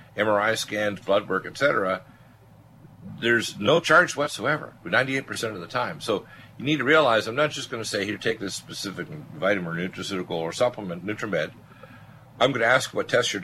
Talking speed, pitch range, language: 185 wpm, 95-120 Hz, English